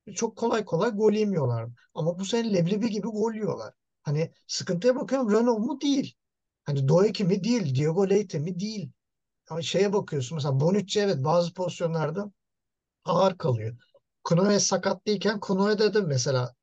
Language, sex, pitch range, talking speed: Turkish, male, 150-205 Hz, 155 wpm